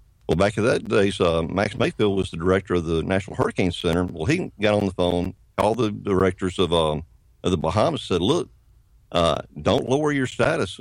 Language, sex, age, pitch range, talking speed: English, male, 50-69, 90-110 Hz, 205 wpm